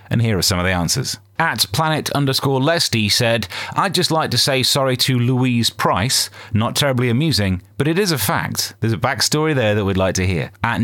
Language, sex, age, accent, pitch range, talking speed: English, male, 30-49, British, 100-130 Hz, 215 wpm